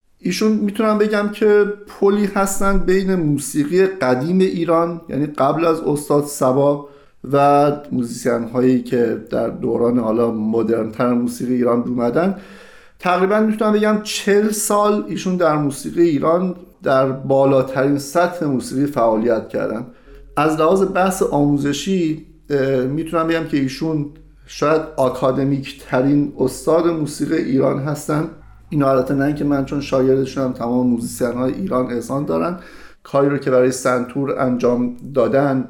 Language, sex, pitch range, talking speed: Persian, male, 130-165 Hz, 130 wpm